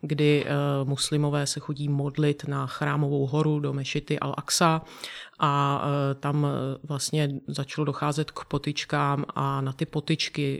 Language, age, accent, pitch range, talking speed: Czech, 30-49, native, 145-155 Hz, 125 wpm